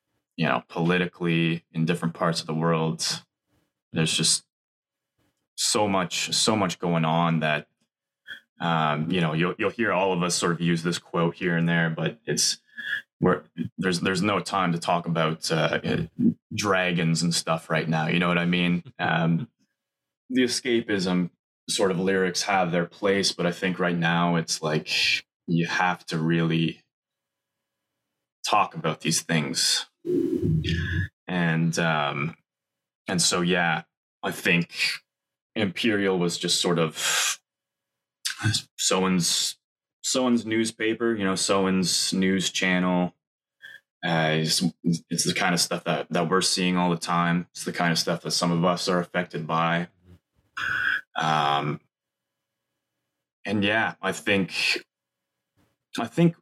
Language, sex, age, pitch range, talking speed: English, male, 20-39, 80-90 Hz, 145 wpm